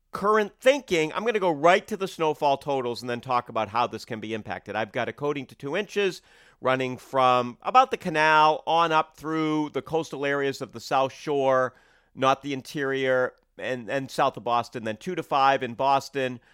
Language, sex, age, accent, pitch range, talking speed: English, male, 40-59, American, 120-155 Hz, 205 wpm